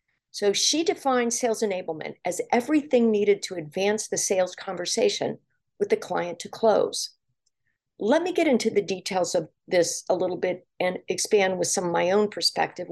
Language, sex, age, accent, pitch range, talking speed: English, female, 50-69, American, 175-230 Hz, 170 wpm